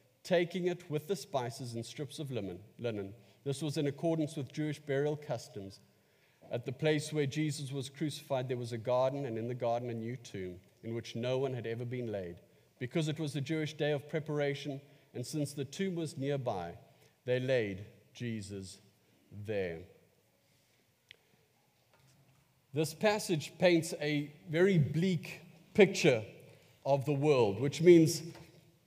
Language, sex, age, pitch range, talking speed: English, male, 50-69, 125-165 Hz, 150 wpm